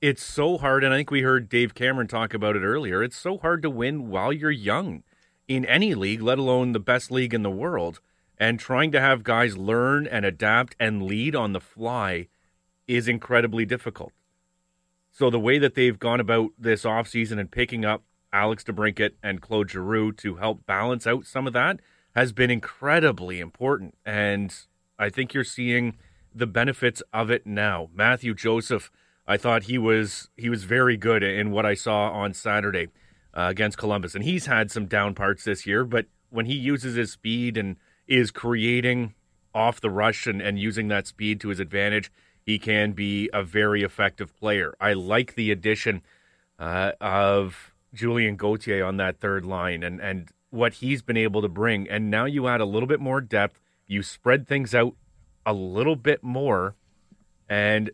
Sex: male